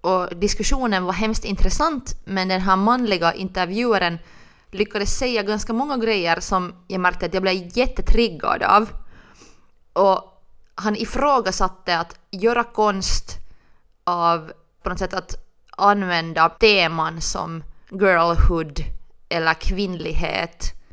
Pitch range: 180-225 Hz